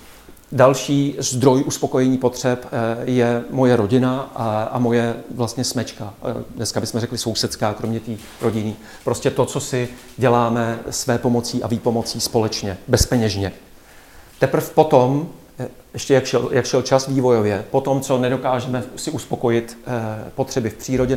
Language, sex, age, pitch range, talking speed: Czech, male, 40-59, 115-130 Hz, 135 wpm